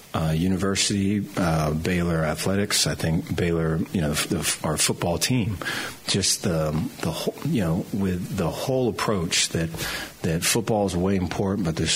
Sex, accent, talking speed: male, American, 165 wpm